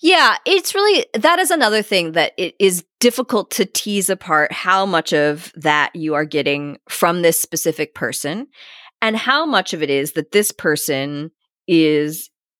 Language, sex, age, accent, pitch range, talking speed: English, female, 30-49, American, 150-210 Hz, 165 wpm